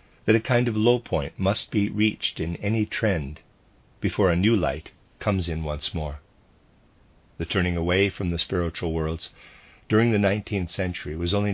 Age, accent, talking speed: 50-69, American, 170 wpm